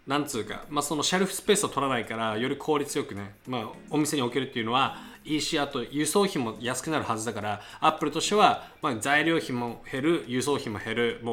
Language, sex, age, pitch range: Japanese, male, 20-39, 115-165 Hz